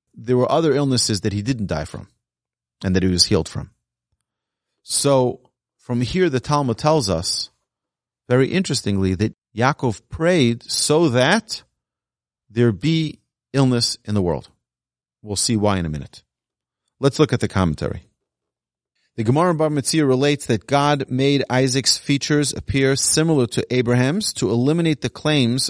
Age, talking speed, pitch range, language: 30-49, 145 wpm, 100-135 Hz, English